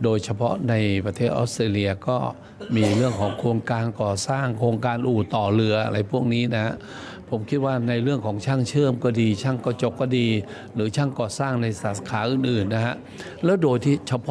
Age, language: 60-79, Thai